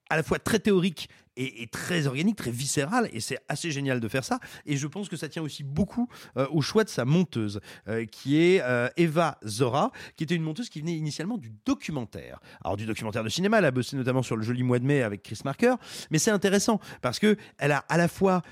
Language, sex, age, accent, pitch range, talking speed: French, male, 30-49, French, 125-175 Hz, 240 wpm